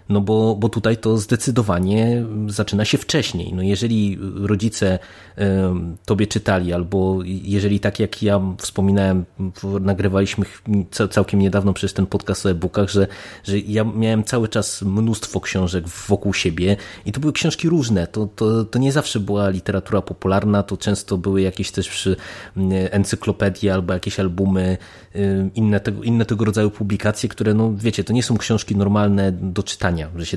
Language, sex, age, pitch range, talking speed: Polish, male, 20-39, 95-110 Hz, 155 wpm